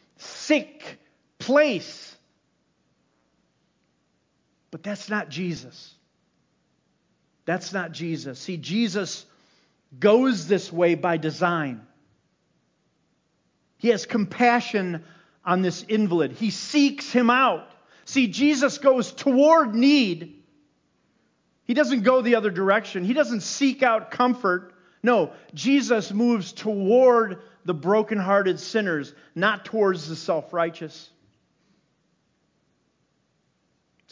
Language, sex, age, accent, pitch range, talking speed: English, male, 50-69, American, 155-220 Hz, 95 wpm